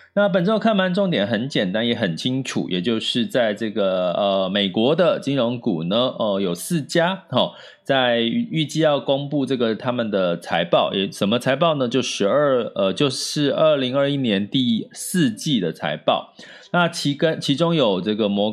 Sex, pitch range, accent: male, 110-170 Hz, native